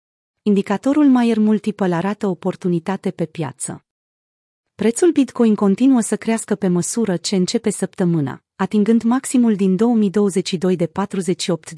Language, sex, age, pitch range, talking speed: Romanian, female, 30-49, 175-220 Hz, 105 wpm